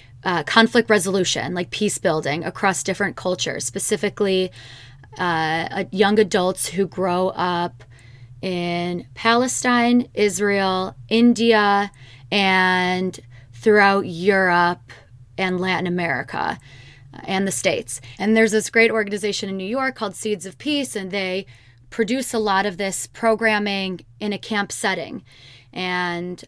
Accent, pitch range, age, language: American, 170-205 Hz, 20-39, English